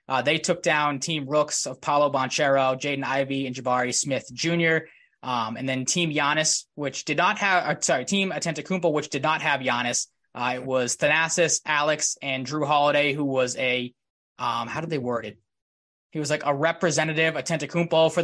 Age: 20-39